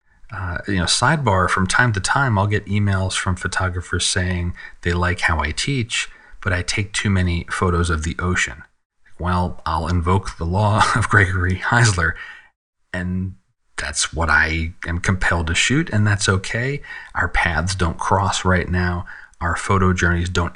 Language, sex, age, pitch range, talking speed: English, male, 30-49, 90-110 Hz, 165 wpm